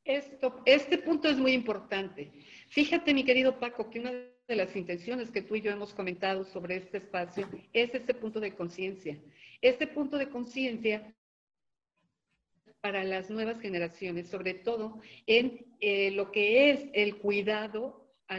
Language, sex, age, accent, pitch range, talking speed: Spanish, female, 50-69, Mexican, 195-250 Hz, 160 wpm